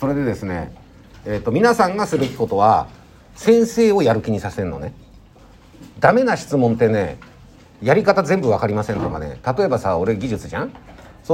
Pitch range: 110-170 Hz